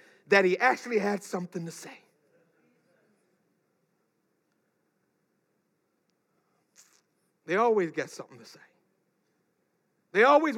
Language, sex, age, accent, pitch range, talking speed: English, male, 60-79, American, 260-340 Hz, 85 wpm